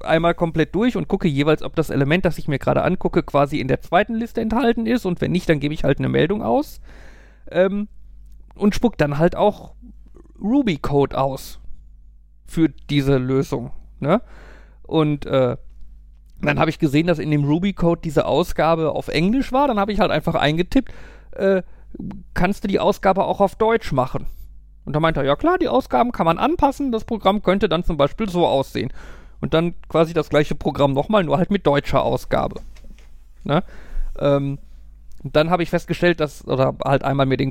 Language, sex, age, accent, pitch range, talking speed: German, male, 40-59, German, 140-195 Hz, 185 wpm